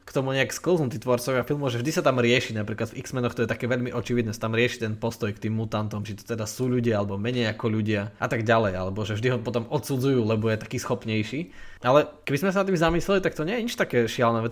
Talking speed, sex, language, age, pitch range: 260 wpm, male, Slovak, 20-39, 110-130 Hz